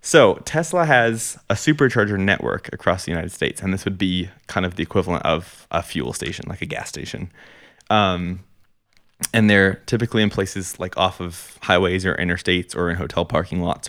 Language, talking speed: English, 185 wpm